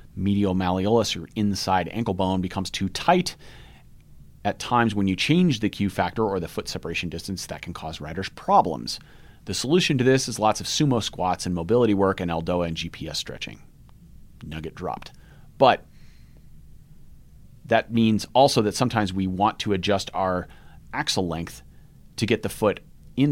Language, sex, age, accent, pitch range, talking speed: English, male, 30-49, American, 90-115 Hz, 165 wpm